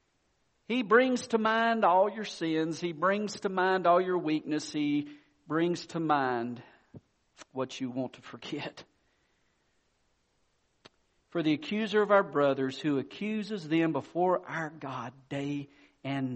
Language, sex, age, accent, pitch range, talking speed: English, male, 50-69, American, 145-210 Hz, 135 wpm